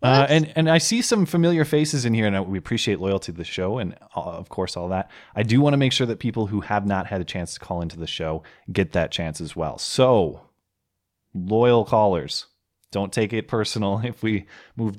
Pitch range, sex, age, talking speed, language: 90-115 Hz, male, 20-39, 230 wpm, English